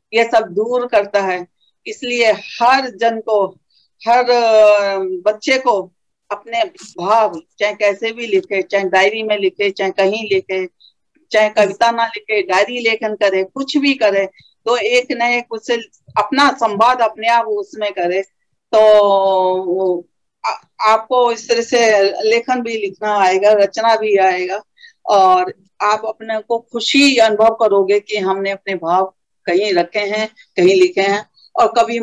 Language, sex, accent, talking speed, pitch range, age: Hindi, female, native, 140 wpm, 195-230 Hz, 50-69